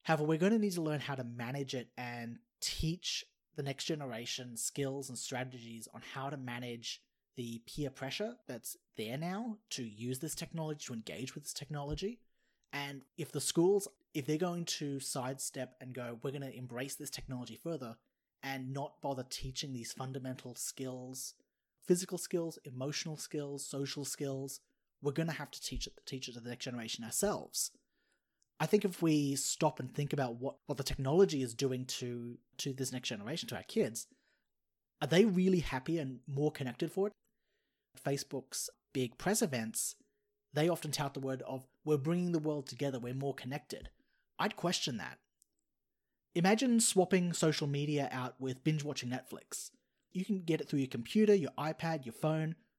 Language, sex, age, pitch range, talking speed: English, male, 30-49, 130-165 Hz, 175 wpm